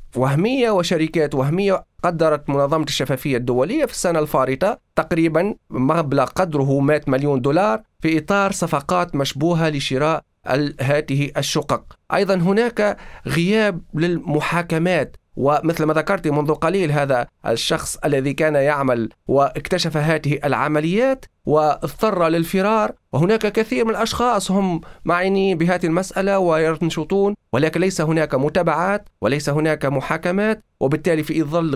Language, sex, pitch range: Arabic, male, 145-185 Hz